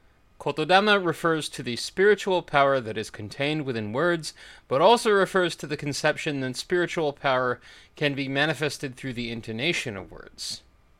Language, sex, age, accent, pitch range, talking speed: English, male, 30-49, American, 125-185 Hz, 155 wpm